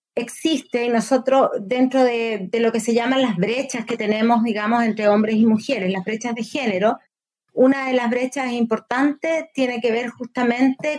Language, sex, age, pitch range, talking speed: Spanish, female, 30-49, 220-260 Hz, 175 wpm